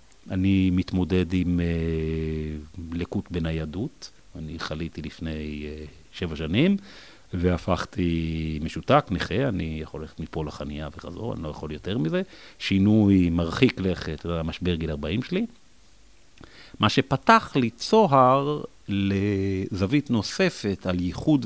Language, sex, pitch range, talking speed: Hebrew, male, 85-115 Hz, 120 wpm